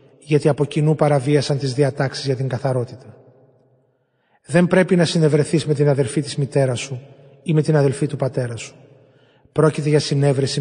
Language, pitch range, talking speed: Greek, 135-155 Hz, 165 wpm